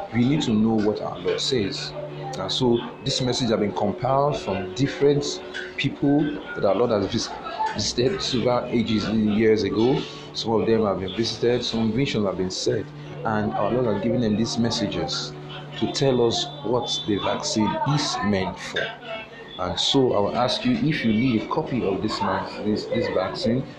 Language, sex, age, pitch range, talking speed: English, male, 40-59, 100-125 Hz, 175 wpm